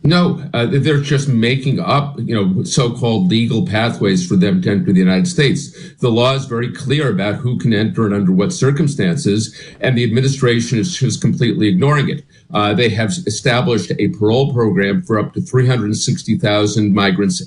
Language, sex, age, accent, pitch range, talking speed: English, male, 50-69, American, 110-150 Hz, 175 wpm